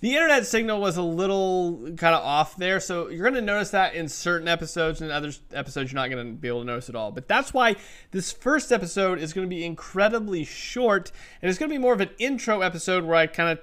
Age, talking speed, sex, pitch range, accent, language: 30-49, 260 wpm, male, 150-190 Hz, American, English